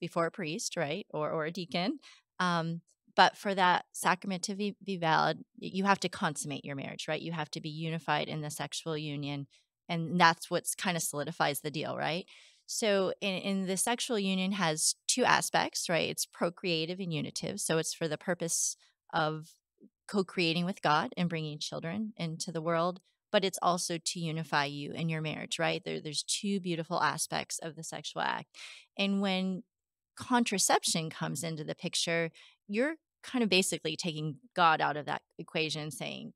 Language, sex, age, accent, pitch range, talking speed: English, female, 30-49, American, 155-190 Hz, 180 wpm